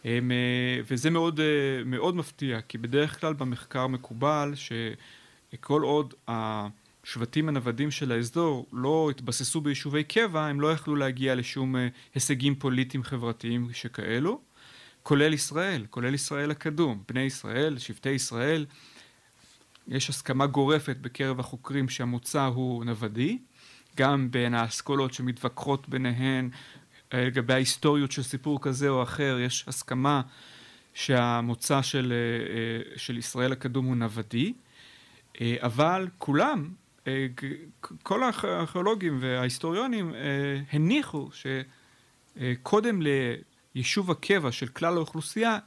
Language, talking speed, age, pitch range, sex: Hebrew, 105 wpm, 30-49, 125-145 Hz, male